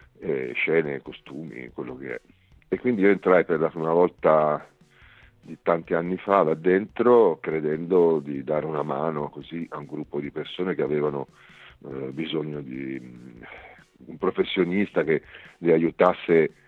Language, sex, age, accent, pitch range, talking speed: Italian, male, 50-69, native, 70-80 Hz, 150 wpm